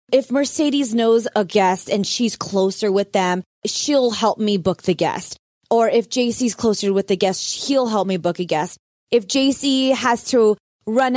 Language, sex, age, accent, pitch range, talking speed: English, female, 20-39, American, 205-270 Hz, 185 wpm